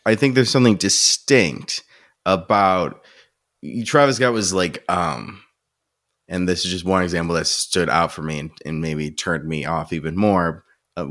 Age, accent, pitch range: 20-39, American, 85-110 Hz